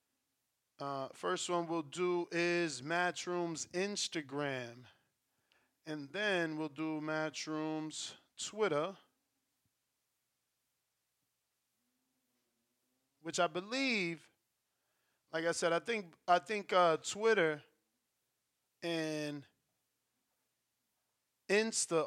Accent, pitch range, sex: American, 150-175 Hz, male